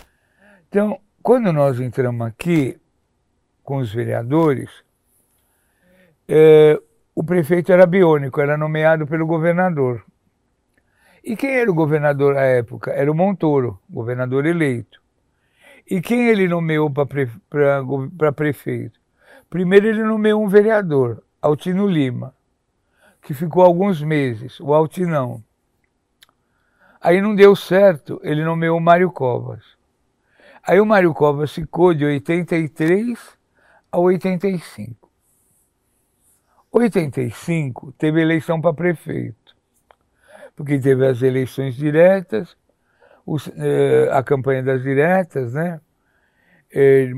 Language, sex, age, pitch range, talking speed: Portuguese, male, 60-79, 135-180 Hz, 110 wpm